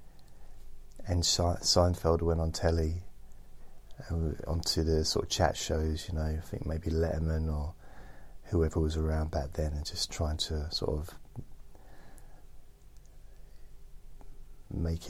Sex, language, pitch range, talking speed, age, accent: male, English, 80-95 Hz, 125 wpm, 30-49, British